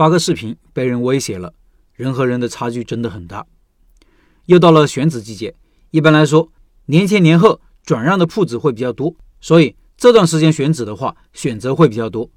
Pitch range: 125-170 Hz